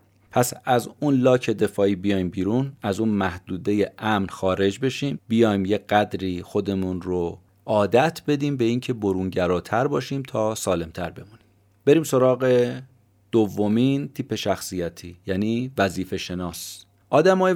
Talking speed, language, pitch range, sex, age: 125 wpm, Persian, 95-125 Hz, male, 30-49